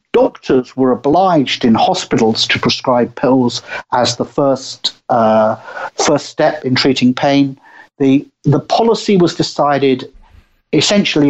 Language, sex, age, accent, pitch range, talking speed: English, male, 50-69, British, 125-175 Hz, 120 wpm